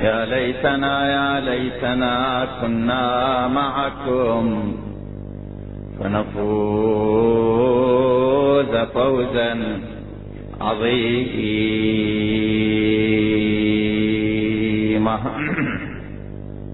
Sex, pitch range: male, 110-140 Hz